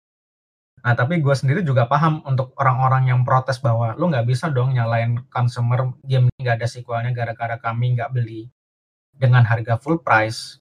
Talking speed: 165 wpm